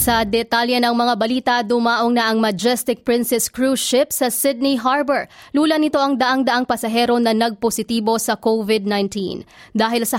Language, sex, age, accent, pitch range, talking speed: English, female, 20-39, Filipino, 210-250 Hz, 155 wpm